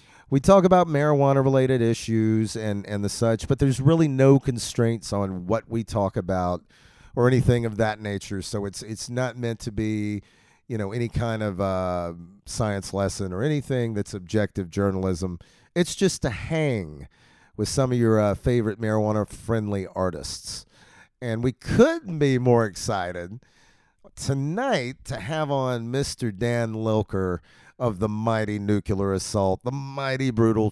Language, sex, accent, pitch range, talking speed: English, male, American, 100-120 Hz, 150 wpm